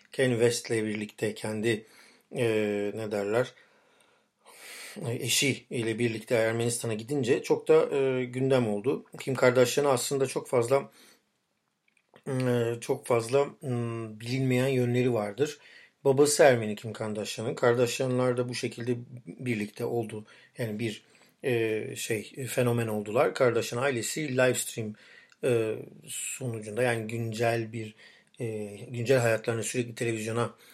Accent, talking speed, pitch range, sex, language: native, 115 wpm, 115-130 Hz, male, Turkish